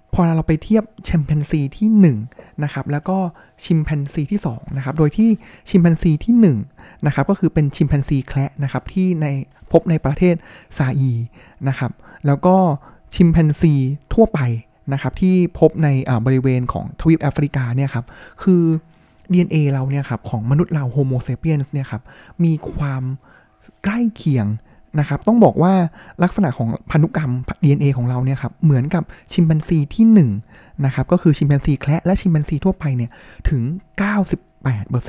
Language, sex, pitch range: Thai, male, 135-180 Hz